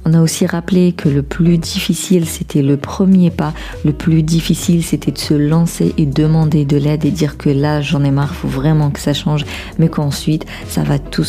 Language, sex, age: French, female, 40-59